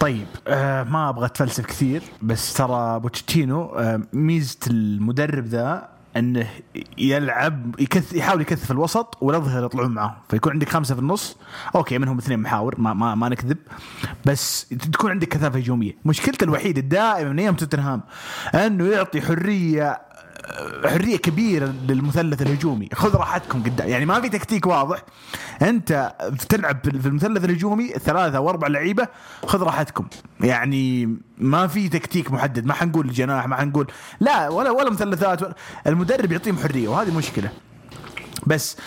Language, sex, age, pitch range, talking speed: English, male, 30-49, 120-165 Hz, 140 wpm